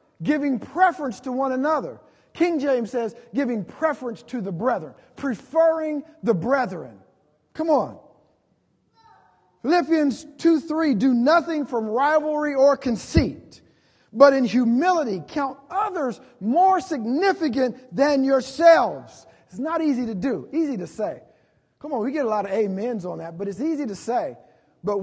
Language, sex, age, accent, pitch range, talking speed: English, male, 50-69, American, 190-280 Hz, 145 wpm